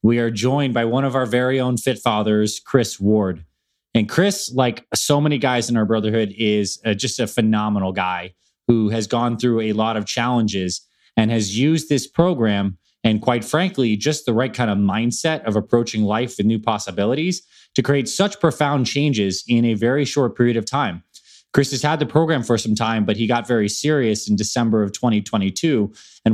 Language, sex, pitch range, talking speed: English, male, 105-125 Hz, 195 wpm